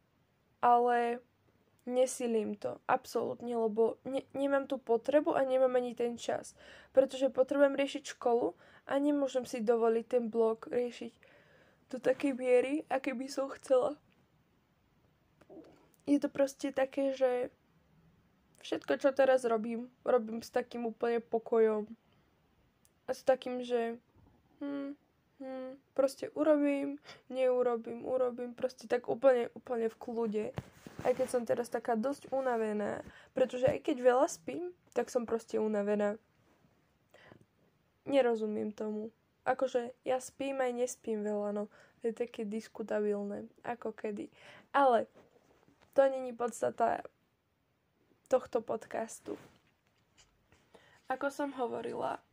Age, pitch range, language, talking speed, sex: 20-39, 230-270 Hz, Slovak, 115 wpm, female